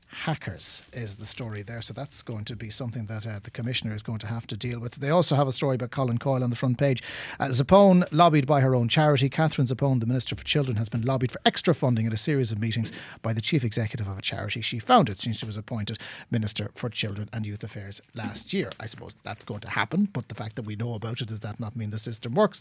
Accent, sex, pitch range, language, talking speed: Irish, male, 120-155 Hz, English, 265 wpm